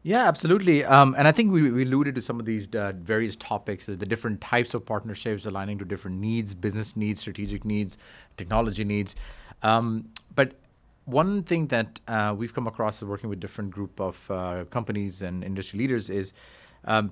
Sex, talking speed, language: male, 185 wpm, English